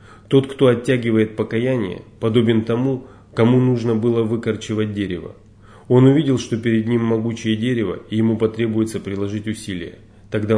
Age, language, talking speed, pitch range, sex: 30-49, Russian, 135 wpm, 100-120 Hz, male